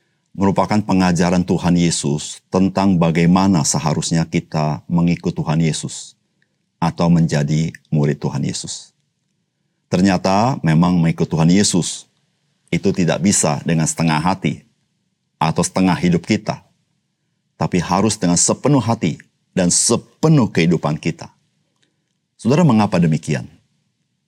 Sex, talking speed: male, 105 wpm